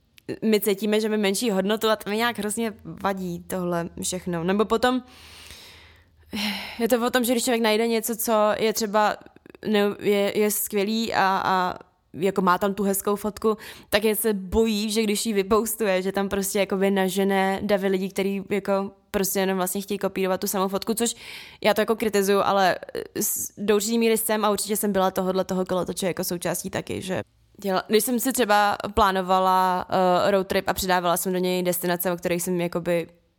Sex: female